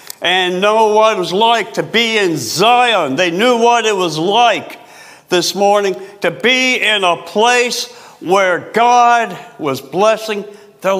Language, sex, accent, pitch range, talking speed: English, male, American, 180-235 Hz, 155 wpm